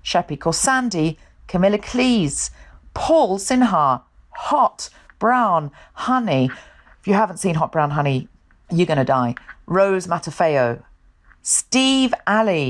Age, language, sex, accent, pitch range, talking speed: 40-59, English, female, British, 150-185 Hz, 115 wpm